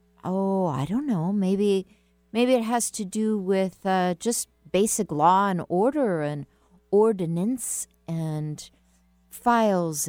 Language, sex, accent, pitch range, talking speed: English, female, American, 170-245 Hz, 125 wpm